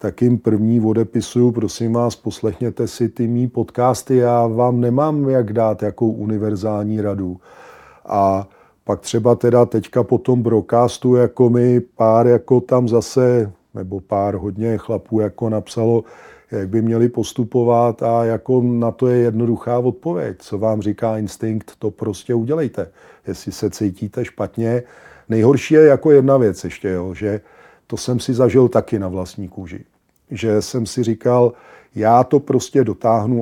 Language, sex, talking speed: Czech, male, 155 wpm